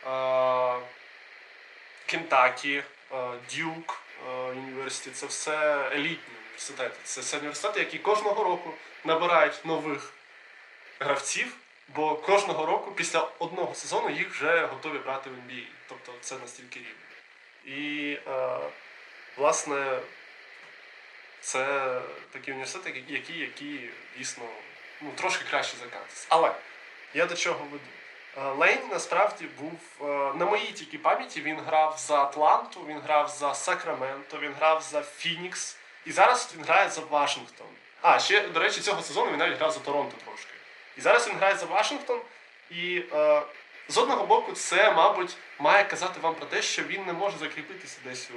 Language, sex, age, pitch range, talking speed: Ukrainian, male, 20-39, 135-170 Hz, 135 wpm